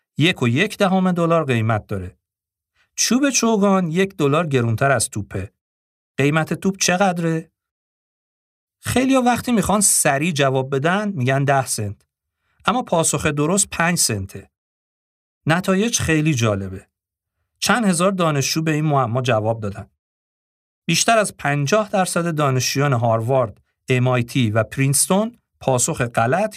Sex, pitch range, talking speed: male, 115-180 Hz, 120 wpm